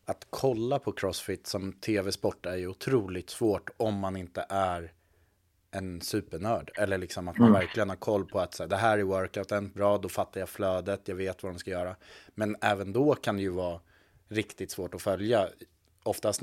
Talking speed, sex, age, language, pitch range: 190 wpm, male, 30-49, Swedish, 90-110 Hz